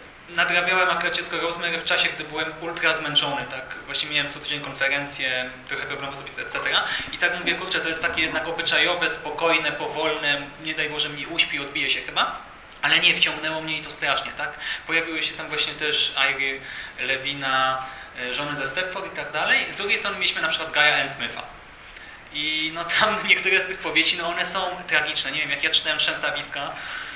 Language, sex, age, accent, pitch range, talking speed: Polish, male, 20-39, native, 150-180 Hz, 185 wpm